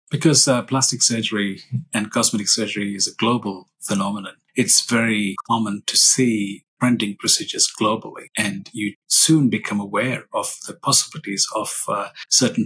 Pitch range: 105-120 Hz